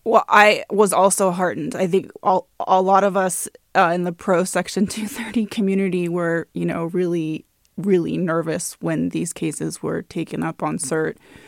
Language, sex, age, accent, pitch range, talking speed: English, female, 20-39, American, 170-200 Hz, 170 wpm